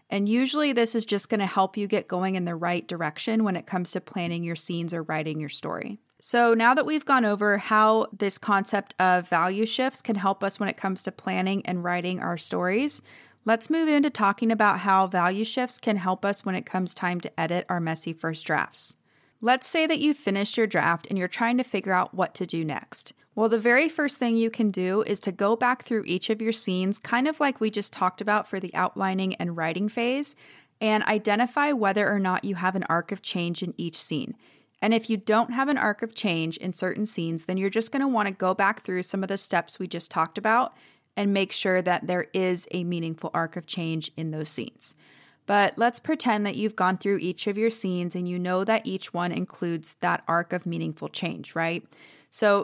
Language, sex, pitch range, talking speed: English, female, 180-225 Hz, 230 wpm